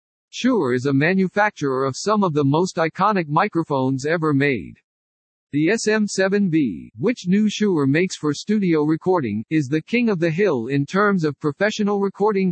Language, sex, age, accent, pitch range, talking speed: English, male, 50-69, American, 140-195 Hz, 160 wpm